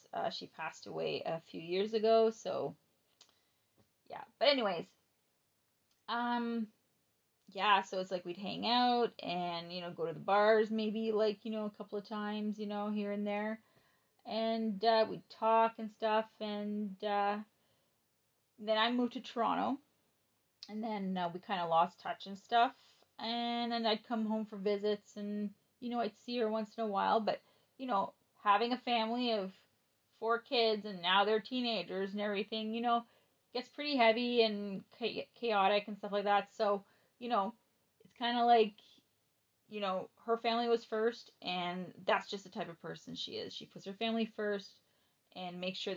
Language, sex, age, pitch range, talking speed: English, female, 30-49, 195-230 Hz, 180 wpm